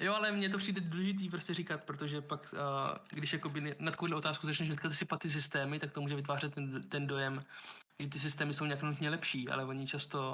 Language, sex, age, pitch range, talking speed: Czech, male, 20-39, 145-165 Hz, 215 wpm